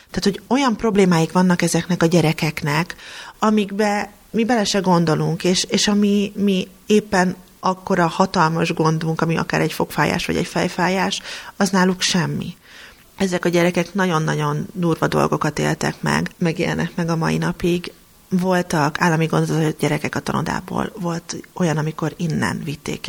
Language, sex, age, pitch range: Hungarian, female, 30-49, 155-185 Hz